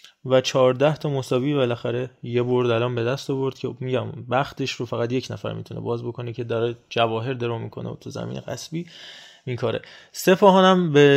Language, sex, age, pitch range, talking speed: Persian, male, 20-39, 125-155 Hz, 175 wpm